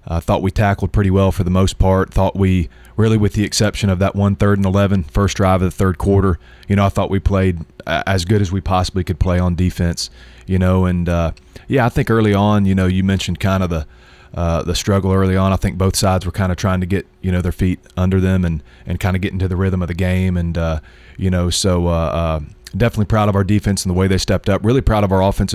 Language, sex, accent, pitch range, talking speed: English, male, American, 90-95 Hz, 270 wpm